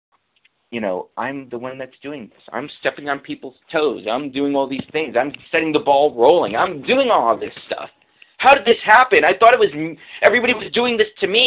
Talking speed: 220 wpm